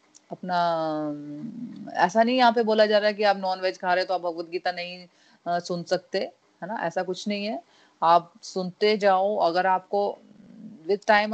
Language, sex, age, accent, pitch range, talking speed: Hindi, female, 30-49, native, 170-215 Hz, 190 wpm